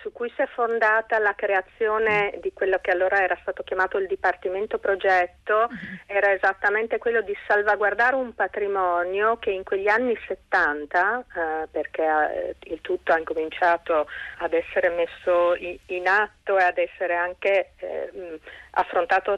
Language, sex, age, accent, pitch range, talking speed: Italian, female, 40-59, native, 180-215 Hz, 145 wpm